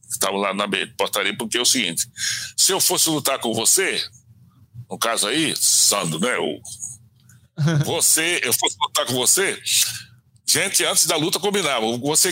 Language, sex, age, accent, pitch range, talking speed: Portuguese, male, 60-79, Brazilian, 120-180 Hz, 150 wpm